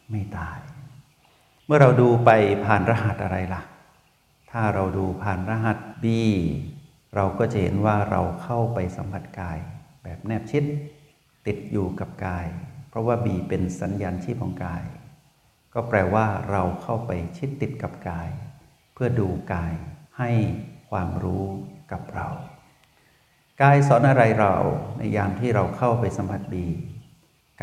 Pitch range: 95-120 Hz